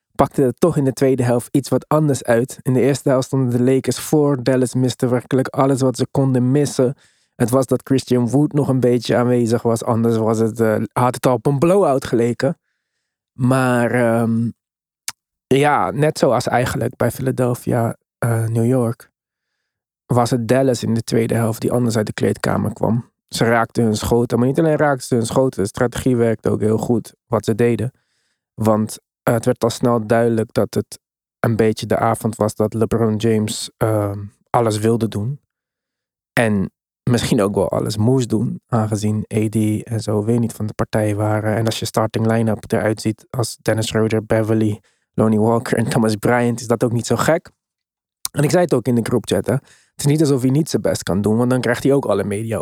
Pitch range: 110-130 Hz